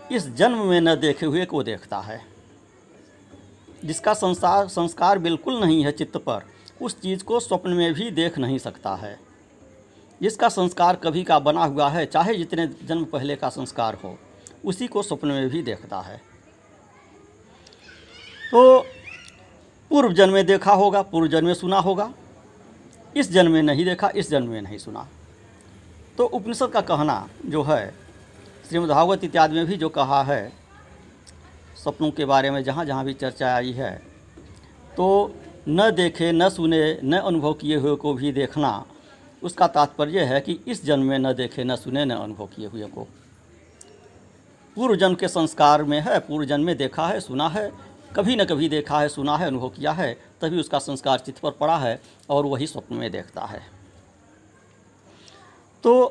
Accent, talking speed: native, 170 wpm